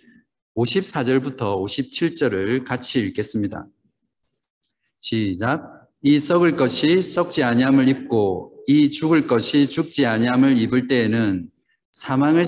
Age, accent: 50-69, native